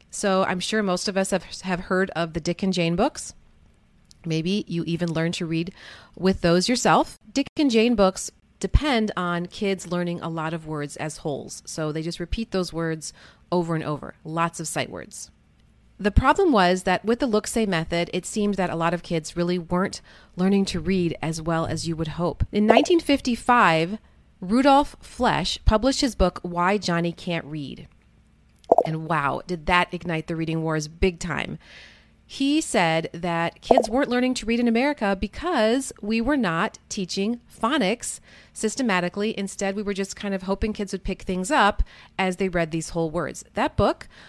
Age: 30-49